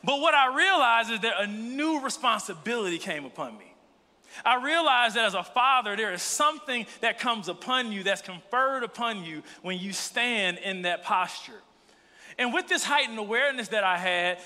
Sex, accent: male, American